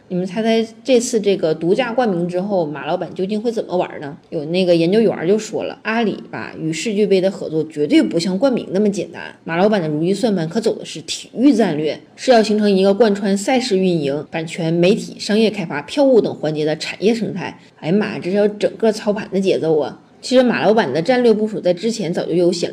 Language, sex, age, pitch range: Chinese, female, 20-39, 170-215 Hz